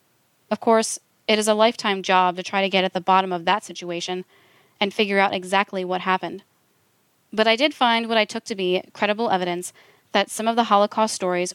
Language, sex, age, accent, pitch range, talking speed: English, female, 20-39, American, 185-225 Hz, 210 wpm